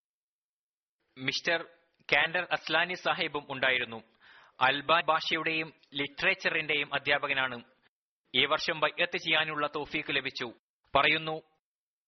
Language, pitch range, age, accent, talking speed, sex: Malayalam, 145-175 Hz, 20-39, native, 80 wpm, male